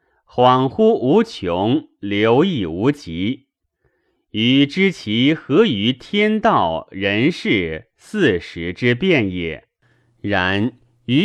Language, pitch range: Chinese, 95-145 Hz